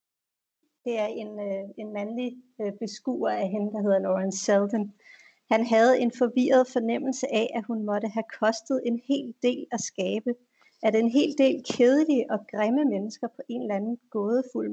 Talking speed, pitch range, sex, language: 175 wpm, 205-255 Hz, female, Danish